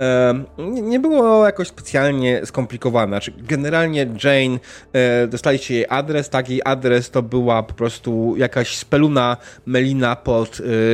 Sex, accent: male, native